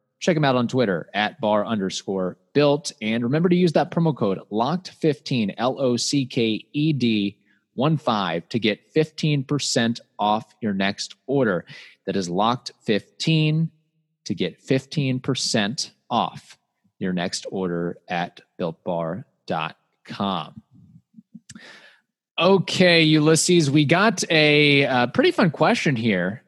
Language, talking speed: English, 105 wpm